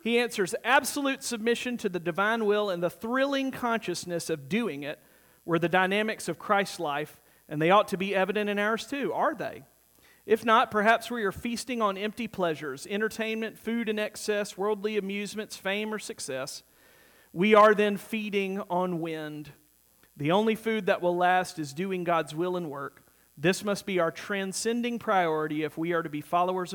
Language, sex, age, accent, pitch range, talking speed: English, male, 40-59, American, 165-230 Hz, 180 wpm